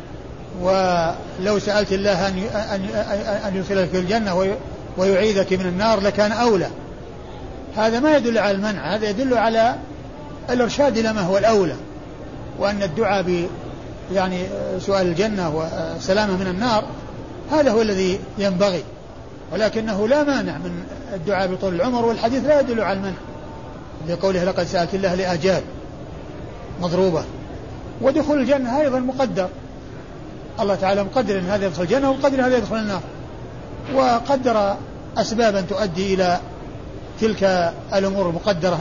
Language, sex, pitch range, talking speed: Arabic, male, 180-215 Hz, 120 wpm